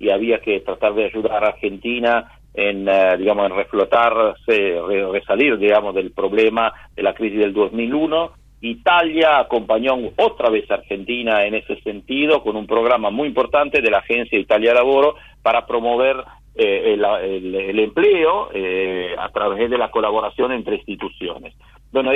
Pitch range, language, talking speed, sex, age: 120-180 Hz, Spanish, 155 wpm, male, 50-69